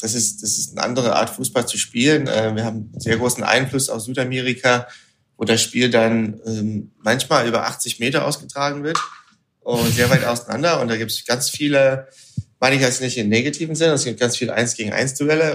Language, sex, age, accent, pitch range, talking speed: German, male, 30-49, German, 110-135 Hz, 190 wpm